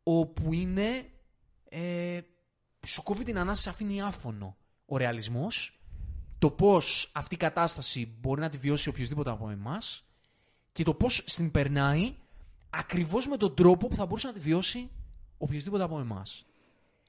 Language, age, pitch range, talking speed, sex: Greek, 20-39, 130-190 Hz, 135 wpm, male